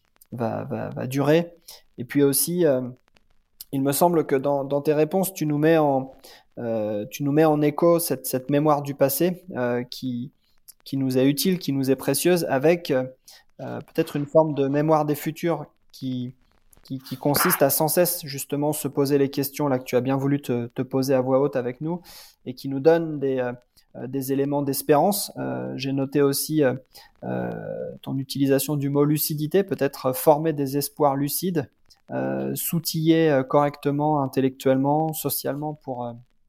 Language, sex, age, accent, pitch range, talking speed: French, male, 20-39, French, 130-155 Hz, 175 wpm